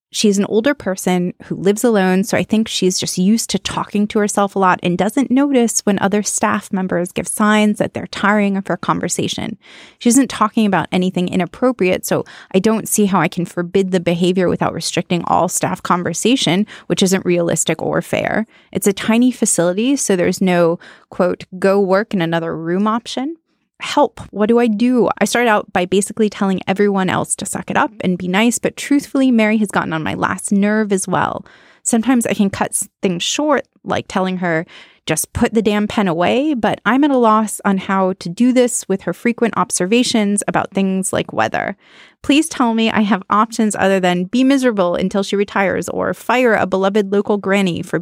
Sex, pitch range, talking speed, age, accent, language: female, 185-225 Hz, 195 wpm, 20-39, American, English